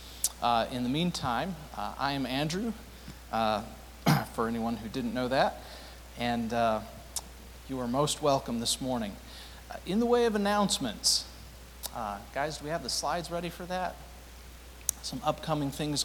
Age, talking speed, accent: 40-59, 155 wpm, American